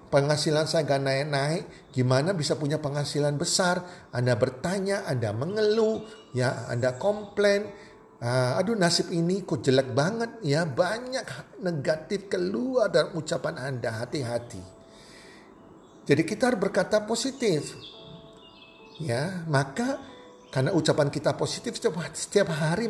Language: Indonesian